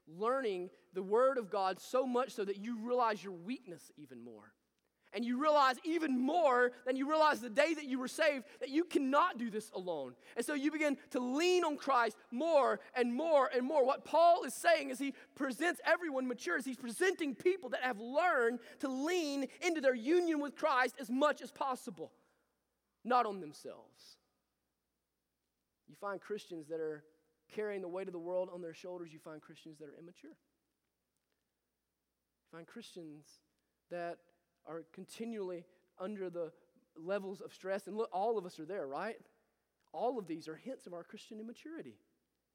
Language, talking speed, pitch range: English, 175 wpm, 175-290 Hz